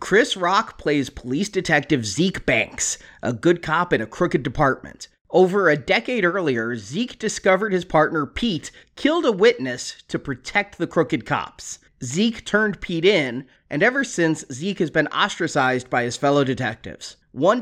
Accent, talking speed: American, 160 wpm